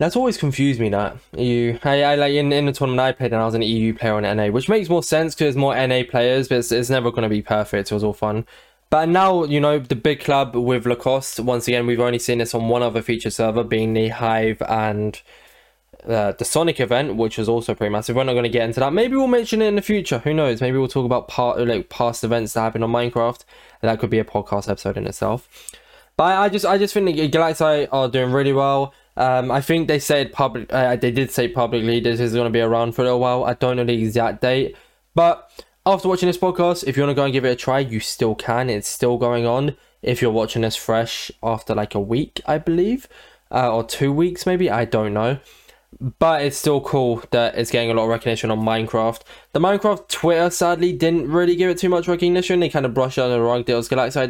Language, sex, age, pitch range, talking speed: English, male, 10-29, 115-150 Hz, 250 wpm